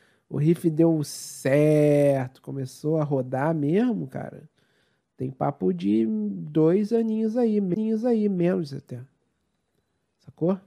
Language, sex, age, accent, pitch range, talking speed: Portuguese, male, 40-59, Brazilian, 140-215 Hz, 110 wpm